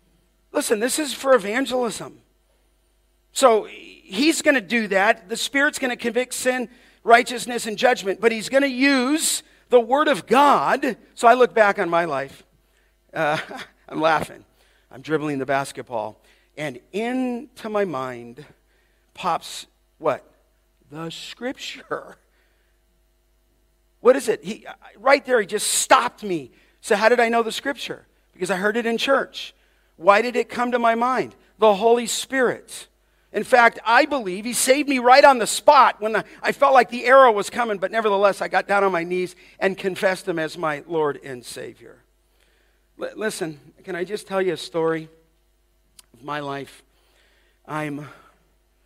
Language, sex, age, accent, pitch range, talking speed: English, male, 40-59, American, 155-245 Hz, 165 wpm